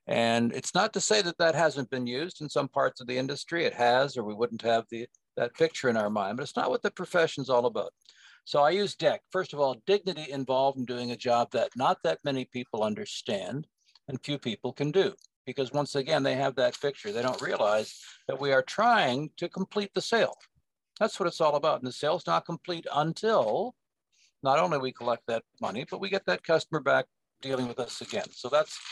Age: 60-79